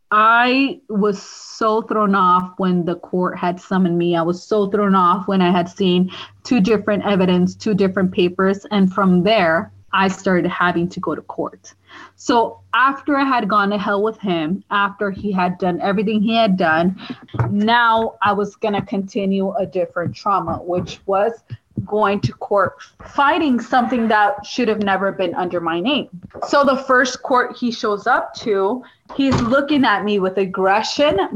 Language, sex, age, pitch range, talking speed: English, female, 20-39, 190-225 Hz, 170 wpm